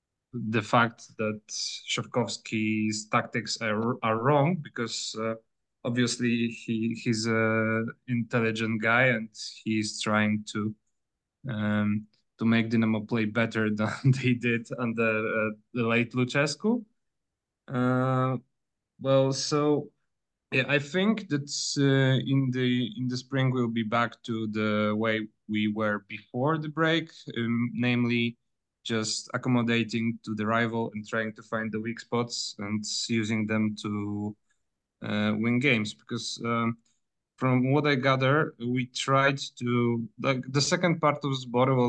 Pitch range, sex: 110-130 Hz, male